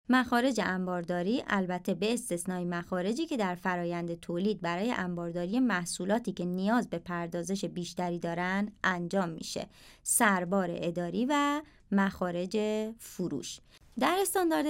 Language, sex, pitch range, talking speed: Persian, male, 180-235 Hz, 115 wpm